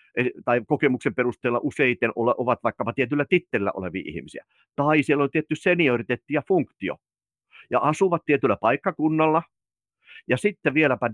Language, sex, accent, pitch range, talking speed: Finnish, male, native, 110-145 Hz, 130 wpm